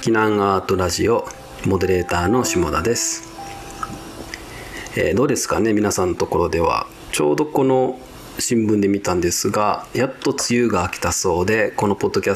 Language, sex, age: Japanese, male, 40-59